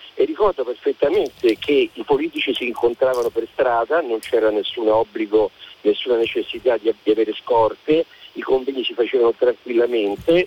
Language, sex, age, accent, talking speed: Italian, male, 40-59, native, 140 wpm